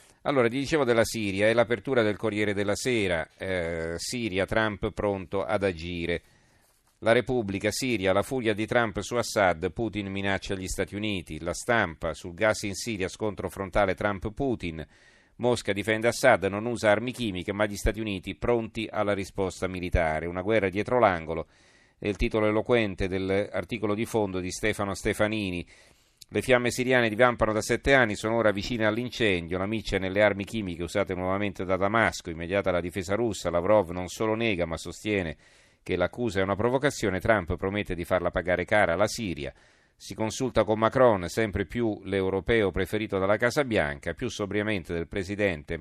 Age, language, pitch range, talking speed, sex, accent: 40-59, Italian, 90-110 Hz, 165 wpm, male, native